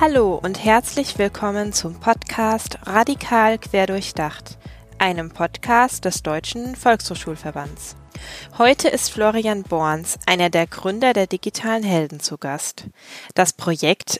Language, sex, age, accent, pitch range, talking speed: German, female, 20-39, German, 170-225 Hz, 120 wpm